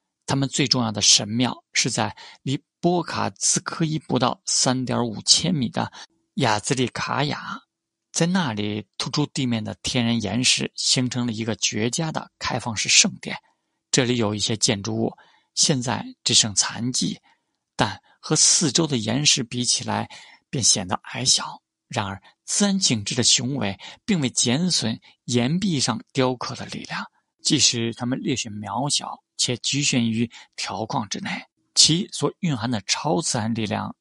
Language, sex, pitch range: Chinese, male, 115-150 Hz